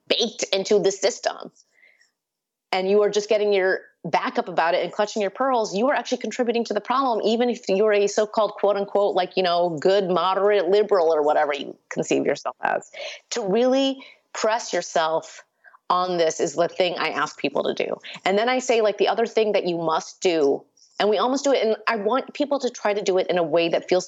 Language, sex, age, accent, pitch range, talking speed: English, female, 30-49, American, 185-245 Hz, 220 wpm